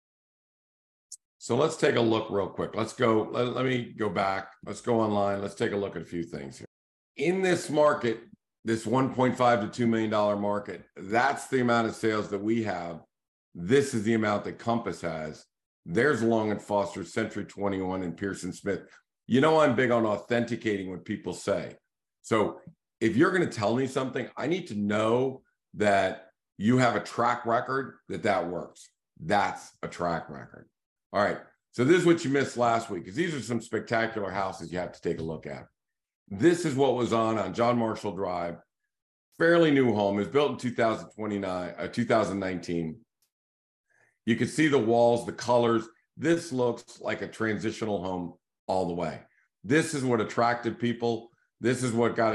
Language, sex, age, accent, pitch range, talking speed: English, male, 50-69, American, 100-120 Hz, 185 wpm